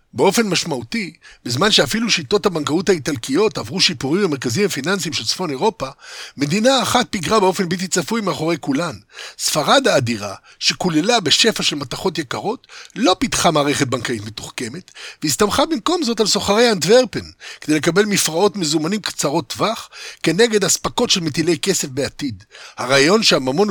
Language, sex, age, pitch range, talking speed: Hebrew, male, 60-79, 140-205 Hz, 135 wpm